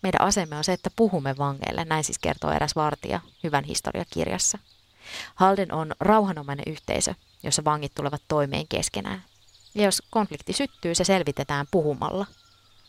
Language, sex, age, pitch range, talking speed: Finnish, female, 30-49, 110-170 Hz, 140 wpm